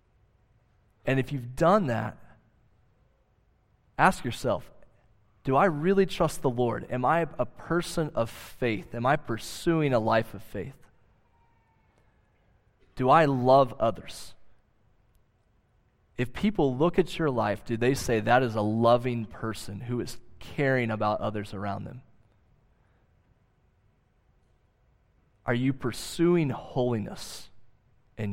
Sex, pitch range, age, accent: male, 110-130 Hz, 20-39, American